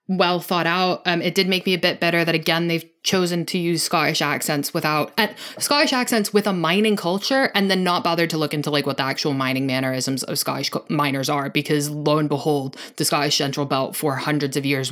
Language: English